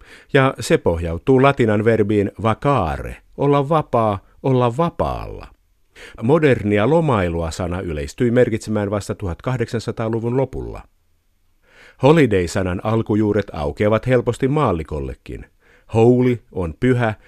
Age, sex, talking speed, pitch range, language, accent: 50-69, male, 90 wpm, 90-125 Hz, Finnish, native